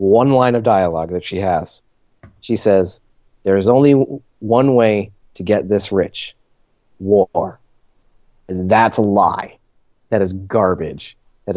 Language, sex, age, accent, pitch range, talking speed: English, male, 30-49, American, 100-135 Hz, 145 wpm